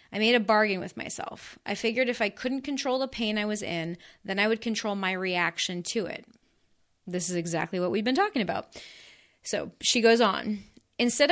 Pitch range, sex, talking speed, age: 185-230 Hz, female, 200 wpm, 20-39